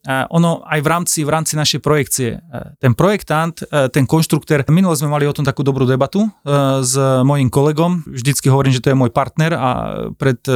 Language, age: Slovak, 30-49